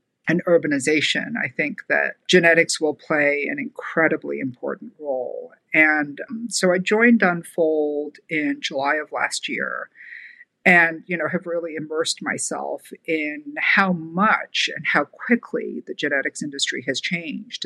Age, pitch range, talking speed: 50-69, 155-235 Hz, 140 wpm